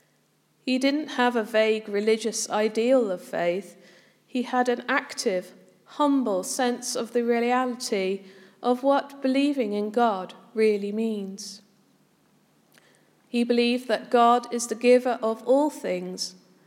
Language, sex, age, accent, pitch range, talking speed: English, female, 40-59, British, 205-260 Hz, 125 wpm